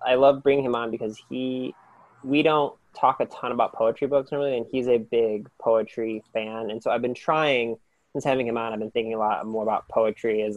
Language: English